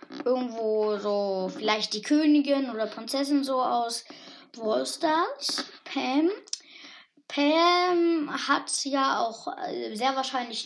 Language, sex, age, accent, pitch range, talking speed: German, female, 20-39, German, 235-310 Hz, 105 wpm